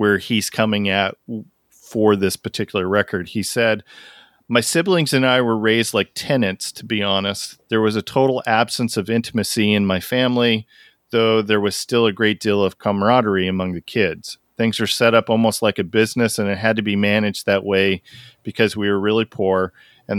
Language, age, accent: English, 40-59, American